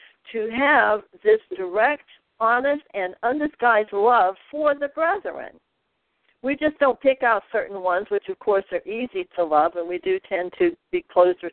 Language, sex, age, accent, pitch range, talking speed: English, female, 60-79, American, 200-300 Hz, 165 wpm